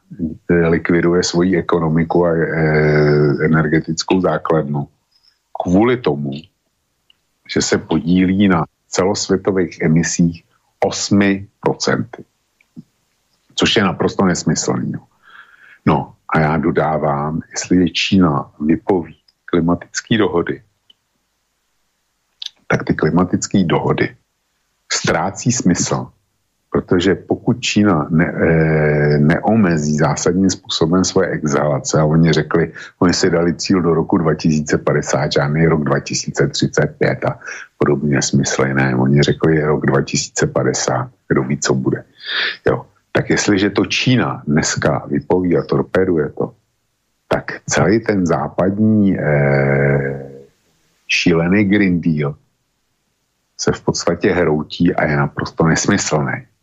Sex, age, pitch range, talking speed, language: male, 50-69, 75-85 Hz, 100 wpm, Slovak